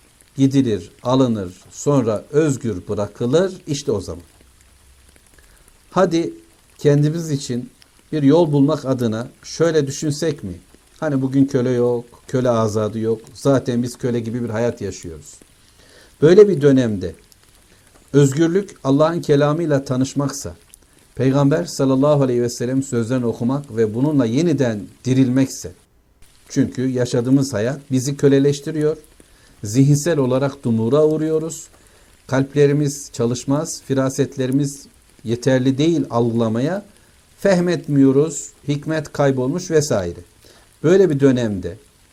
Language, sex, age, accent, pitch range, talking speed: Turkish, male, 60-79, native, 120-145 Hz, 105 wpm